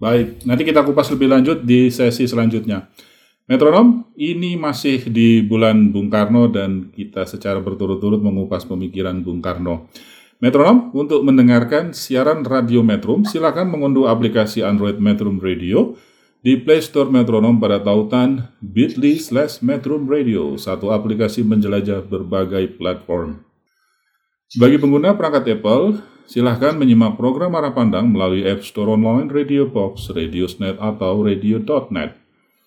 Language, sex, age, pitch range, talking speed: Indonesian, male, 40-59, 105-145 Hz, 125 wpm